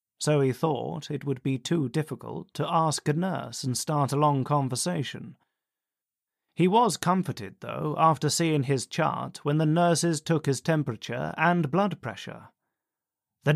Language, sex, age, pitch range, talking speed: English, male, 30-49, 140-185 Hz, 155 wpm